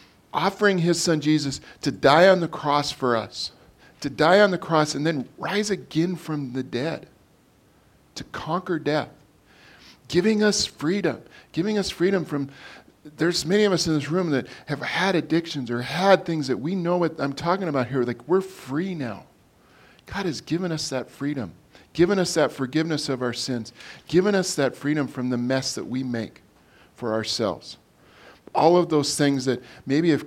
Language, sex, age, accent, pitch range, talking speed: English, male, 50-69, American, 125-160 Hz, 180 wpm